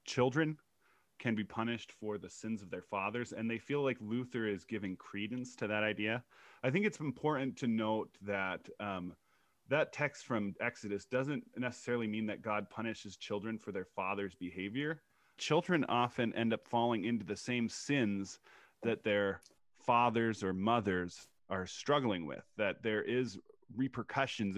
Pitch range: 100-120 Hz